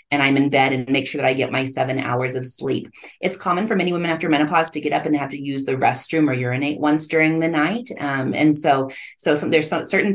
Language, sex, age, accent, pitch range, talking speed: English, female, 30-49, American, 135-165 Hz, 265 wpm